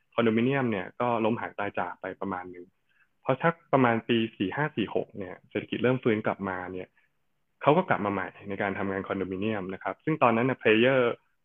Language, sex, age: Thai, male, 20-39